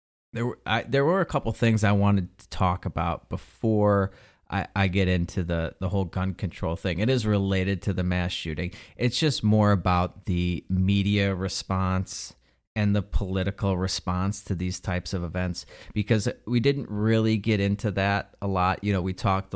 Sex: male